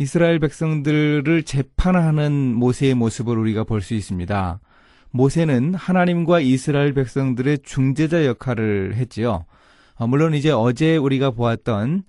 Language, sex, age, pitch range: Korean, male, 30-49, 110-150 Hz